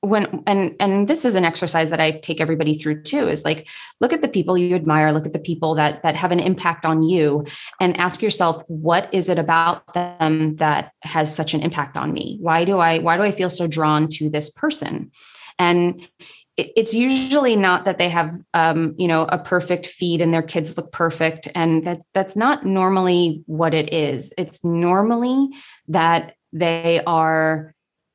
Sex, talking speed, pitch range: female, 190 wpm, 160-185 Hz